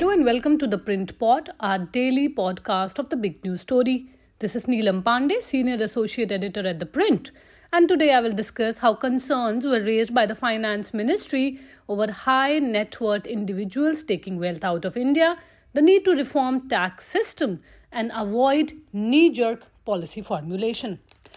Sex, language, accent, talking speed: female, English, Indian, 165 wpm